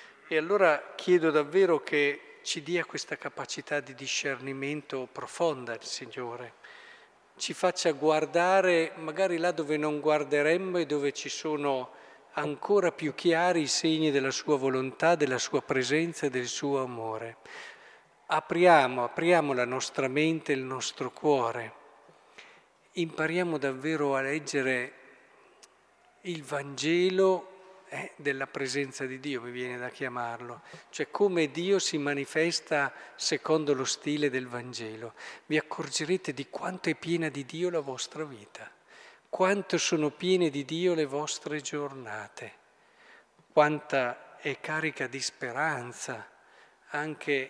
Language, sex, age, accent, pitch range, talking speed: Italian, male, 50-69, native, 130-165 Hz, 125 wpm